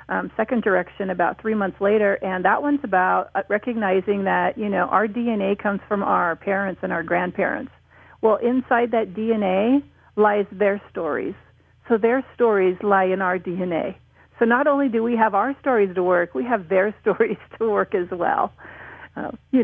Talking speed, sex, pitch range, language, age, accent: 175 wpm, female, 185-240 Hz, English, 40-59, American